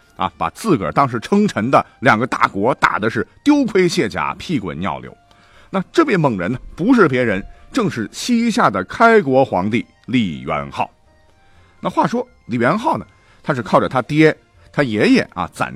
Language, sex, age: Chinese, male, 50-69